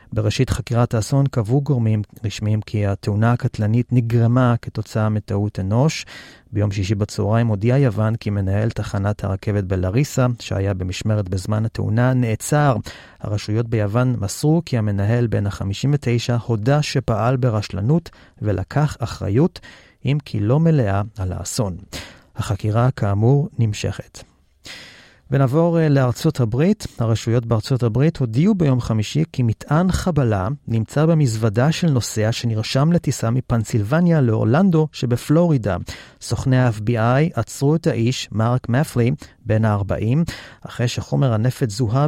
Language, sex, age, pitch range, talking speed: Hebrew, male, 40-59, 105-135 Hz, 120 wpm